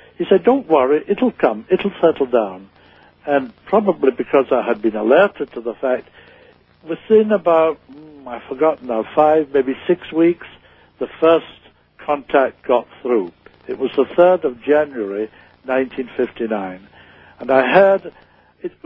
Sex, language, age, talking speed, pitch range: male, English, 60-79, 125 wpm, 120-160 Hz